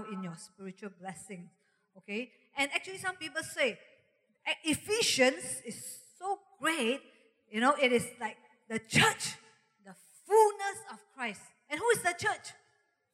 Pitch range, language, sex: 230-360 Hz, English, female